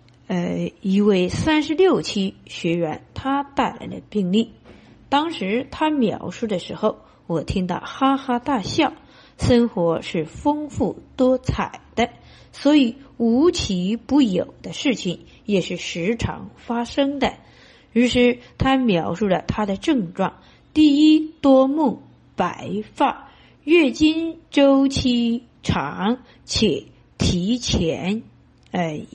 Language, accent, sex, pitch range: Chinese, native, female, 195-280 Hz